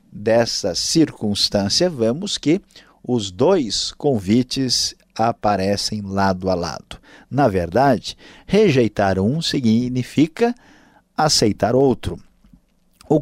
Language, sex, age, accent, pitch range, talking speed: Portuguese, male, 50-69, Brazilian, 95-135 Hz, 85 wpm